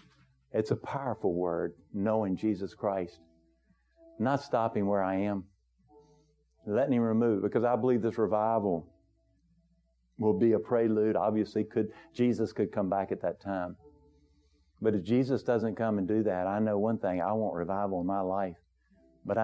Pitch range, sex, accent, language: 90-115 Hz, male, American, English